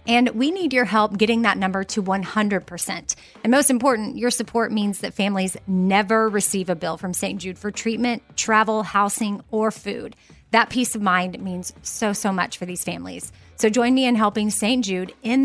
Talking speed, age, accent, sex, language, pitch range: 195 wpm, 30-49, American, female, English, 185-230 Hz